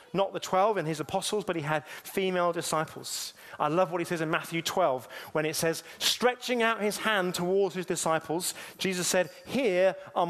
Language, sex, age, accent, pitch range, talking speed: English, male, 30-49, British, 155-190 Hz, 190 wpm